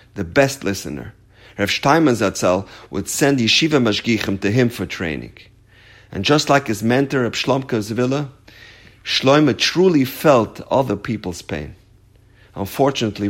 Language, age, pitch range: English, 50-69, 100-135 Hz